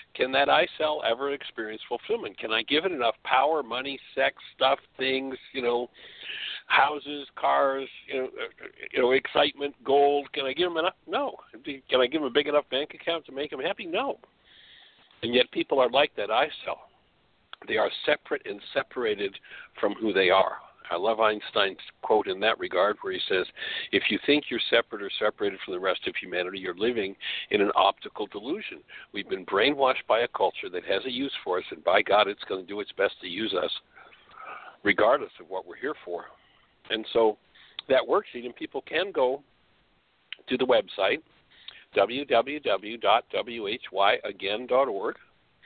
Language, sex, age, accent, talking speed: English, male, 60-79, American, 175 wpm